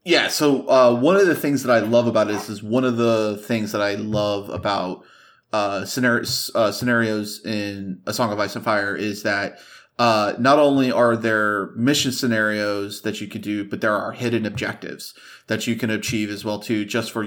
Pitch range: 110-125 Hz